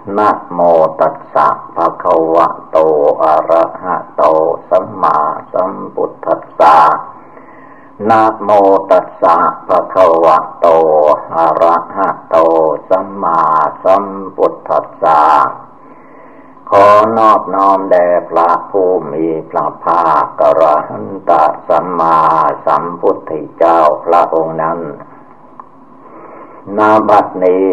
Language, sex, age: Thai, male, 50-69